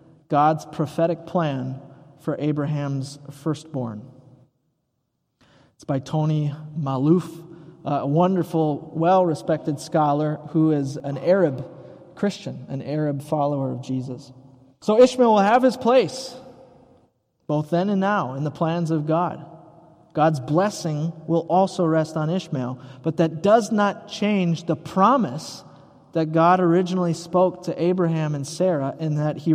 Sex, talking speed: male, 130 wpm